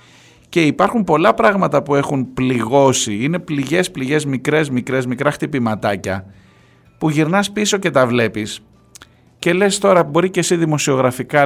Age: 50-69